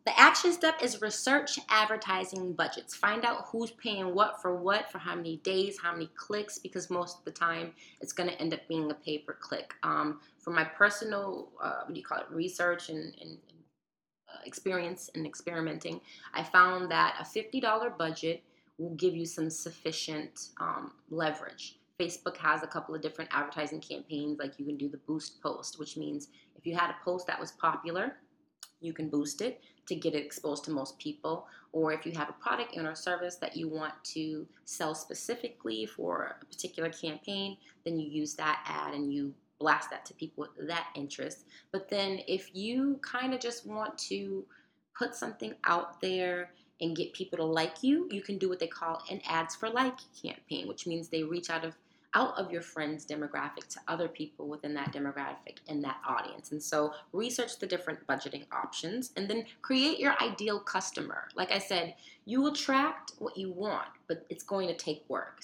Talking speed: 190 wpm